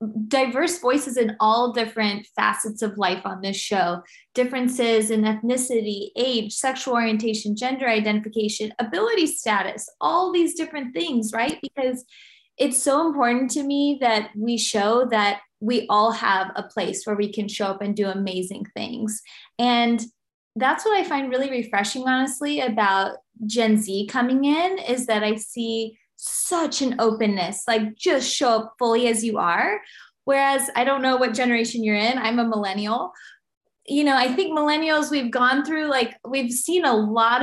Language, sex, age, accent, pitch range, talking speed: English, female, 20-39, American, 215-260 Hz, 165 wpm